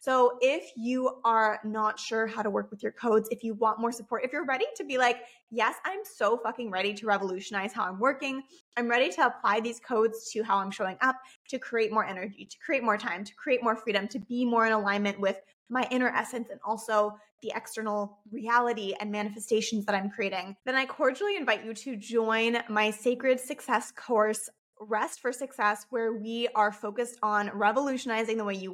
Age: 20-39